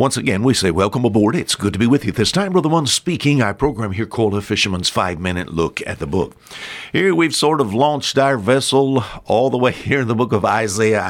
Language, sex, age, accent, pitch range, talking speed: English, male, 60-79, American, 100-140 Hz, 255 wpm